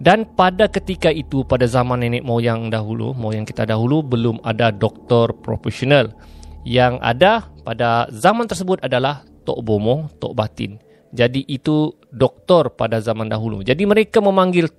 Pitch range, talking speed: 110-140 Hz, 140 wpm